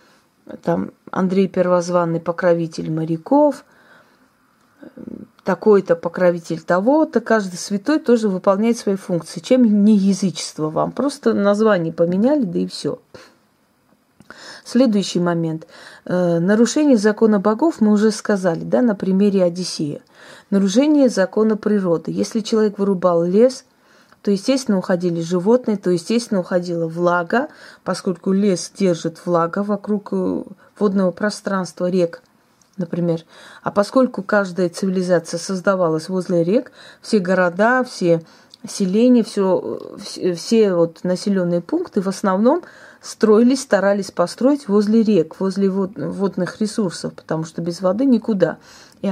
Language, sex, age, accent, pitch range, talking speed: Russian, female, 30-49, native, 175-225 Hz, 110 wpm